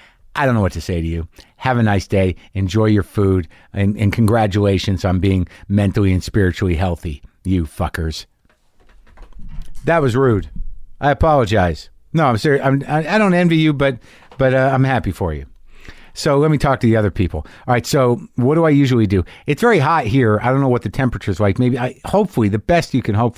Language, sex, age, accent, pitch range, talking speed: English, male, 50-69, American, 100-135 Hz, 210 wpm